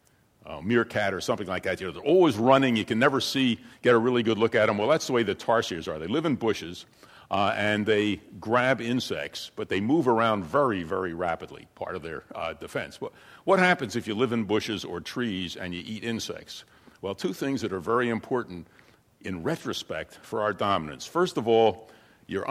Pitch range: 95-125 Hz